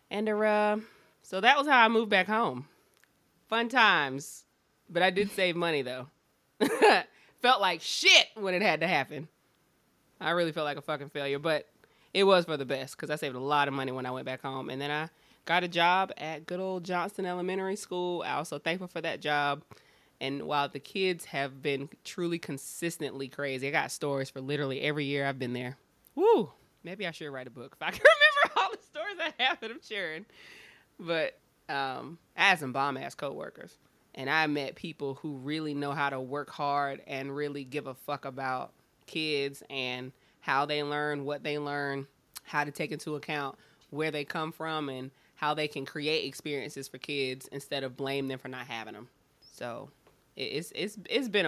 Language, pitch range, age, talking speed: English, 135-175 Hz, 20-39, 200 wpm